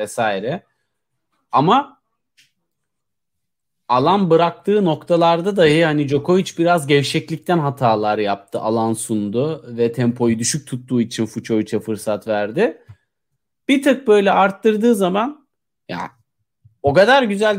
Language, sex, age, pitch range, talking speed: Turkish, male, 40-59, 130-195 Hz, 105 wpm